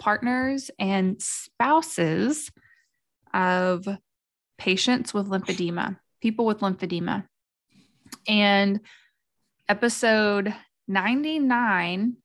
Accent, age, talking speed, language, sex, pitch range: American, 20-39, 65 wpm, English, female, 185-225 Hz